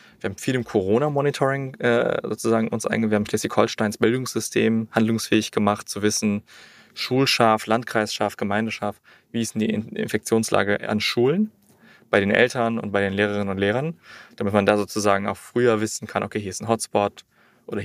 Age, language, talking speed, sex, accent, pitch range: 20-39, German, 170 wpm, male, German, 105-120 Hz